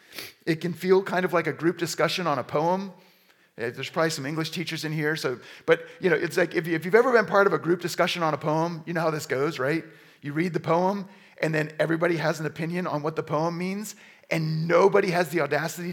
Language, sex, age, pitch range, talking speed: English, male, 40-59, 150-195 Hz, 245 wpm